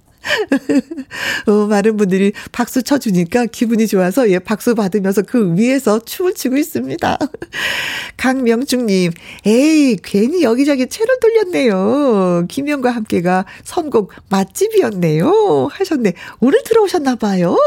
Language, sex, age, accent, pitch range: Korean, female, 40-59, native, 190-280 Hz